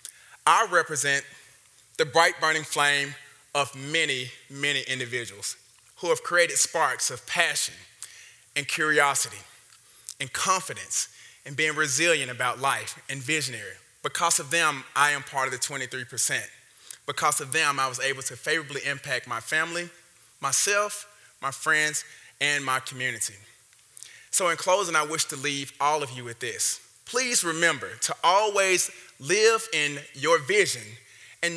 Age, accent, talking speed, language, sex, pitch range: 20-39, American, 140 wpm, English, male, 135-170 Hz